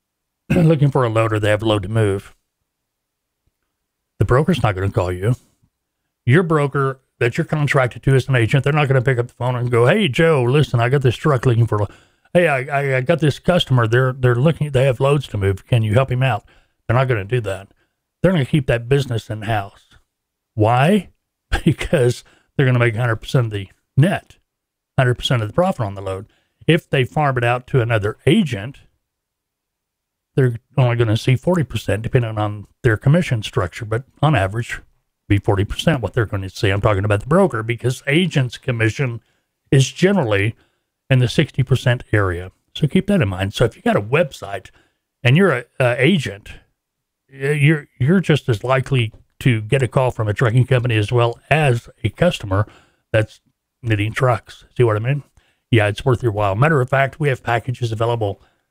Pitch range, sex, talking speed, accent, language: 110-140 Hz, male, 200 wpm, American, English